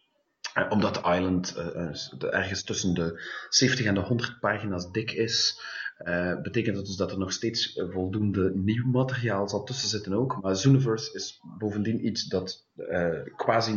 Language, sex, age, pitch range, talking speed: English, male, 30-49, 95-120 Hz, 155 wpm